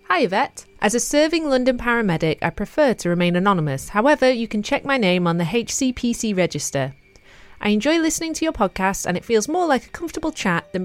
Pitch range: 175-230 Hz